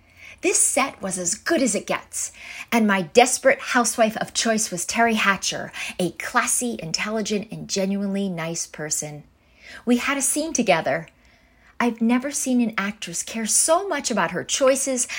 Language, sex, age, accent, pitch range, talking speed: English, female, 40-59, American, 180-255 Hz, 160 wpm